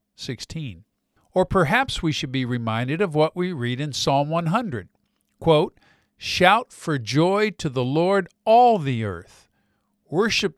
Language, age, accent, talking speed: English, 50-69, American, 140 wpm